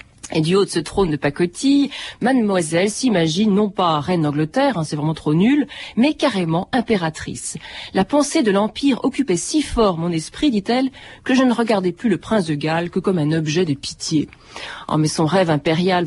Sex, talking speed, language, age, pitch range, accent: female, 185 wpm, French, 40-59, 160-235 Hz, French